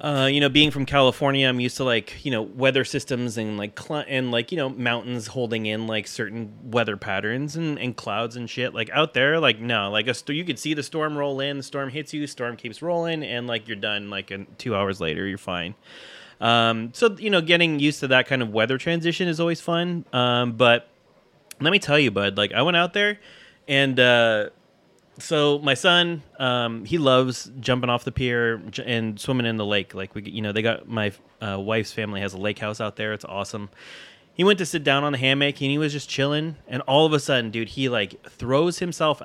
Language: English